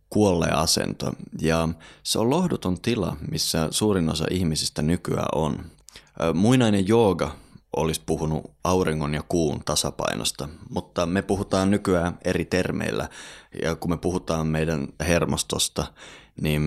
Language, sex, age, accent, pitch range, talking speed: Finnish, male, 30-49, native, 80-100 Hz, 120 wpm